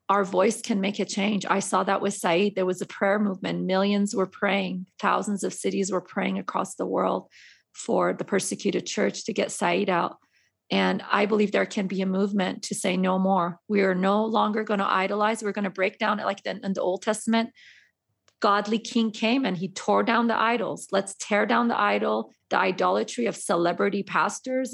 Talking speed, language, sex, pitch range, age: 205 wpm, English, female, 185-220 Hz, 30-49